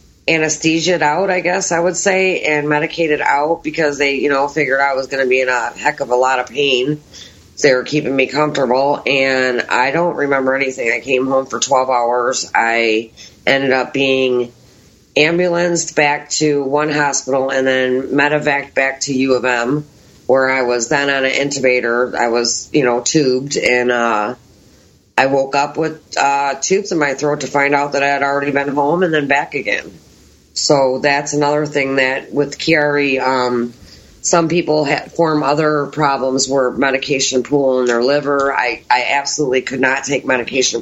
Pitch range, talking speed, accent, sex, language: 125-145 Hz, 180 wpm, American, female, English